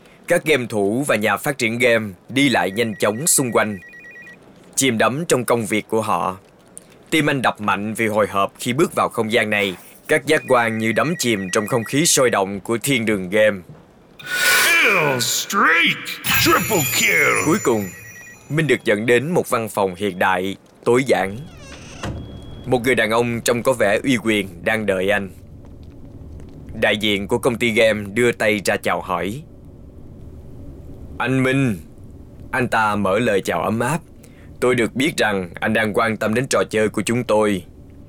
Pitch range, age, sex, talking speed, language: 95-120 Hz, 20-39, male, 170 wpm, Vietnamese